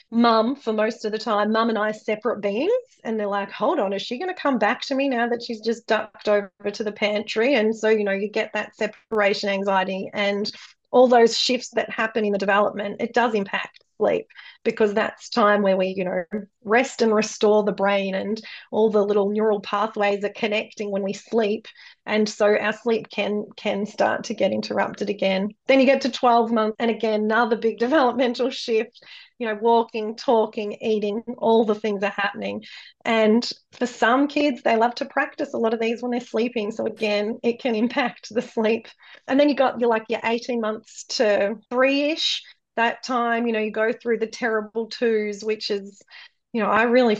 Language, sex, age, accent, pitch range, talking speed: English, female, 30-49, Australian, 210-240 Hz, 205 wpm